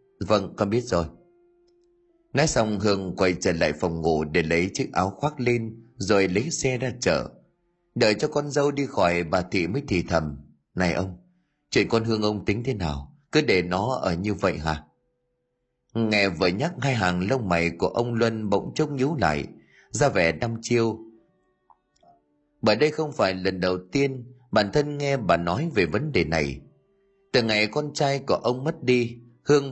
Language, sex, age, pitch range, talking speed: Vietnamese, male, 30-49, 95-140 Hz, 190 wpm